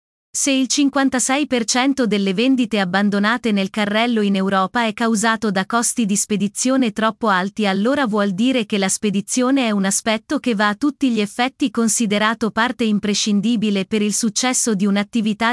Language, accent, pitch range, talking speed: Italian, native, 205-250 Hz, 160 wpm